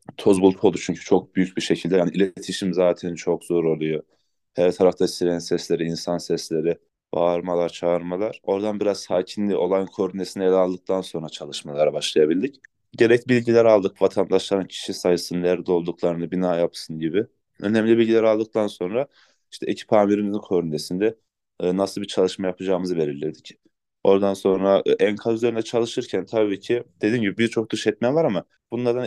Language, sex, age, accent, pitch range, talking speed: Turkish, male, 30-49, native, 90-110 Hz, 145 wpm